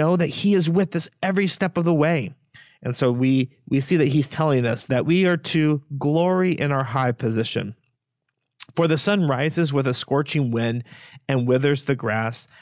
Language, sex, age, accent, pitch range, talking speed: English, male, 30-49, American, 130-160 Hz, 190 wpm